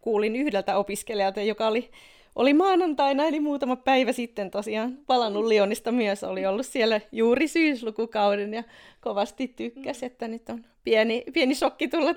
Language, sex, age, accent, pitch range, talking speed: Finnish, female, 30-49, native, 200-260 Hz, 150 wpm